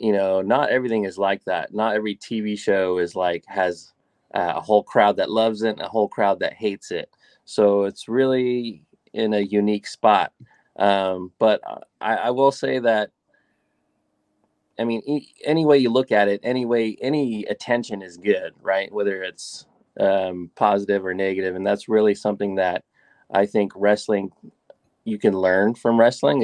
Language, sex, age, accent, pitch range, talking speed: English, male, 20-39, American, 95-110 Hz, 170 wpm